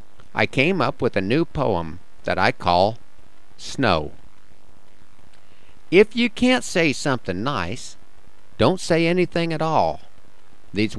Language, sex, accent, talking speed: English, male, American, 125 wpm